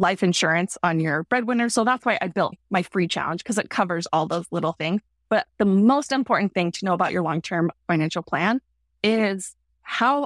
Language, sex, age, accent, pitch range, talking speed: English, female, 20-39, American, 175-215 Hz, 200 wpm